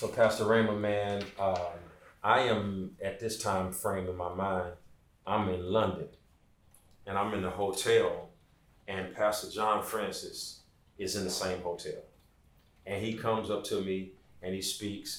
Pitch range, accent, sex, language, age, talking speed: 90-110 Hz, American, male, English, 30-49, 160 wpm